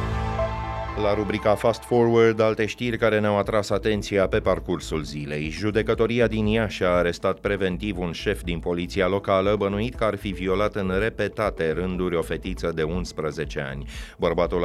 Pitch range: 85-105 Hz